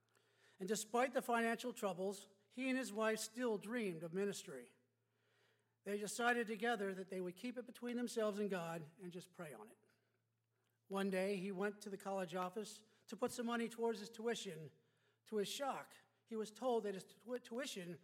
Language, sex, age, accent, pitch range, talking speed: English, male, 40-59, American, 180-225 Hz, 185 wpm